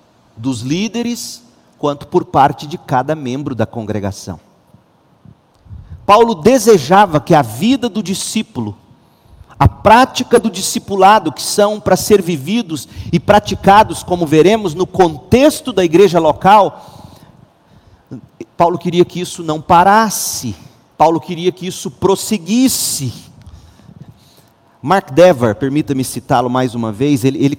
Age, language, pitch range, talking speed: 50-69, Portuguese, 130-185 Hz, 120 wpm